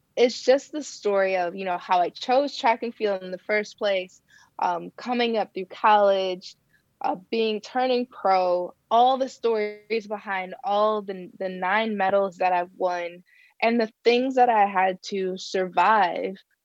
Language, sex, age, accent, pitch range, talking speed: English, female, 20-39, American, 185-225 Hz, 165 wpm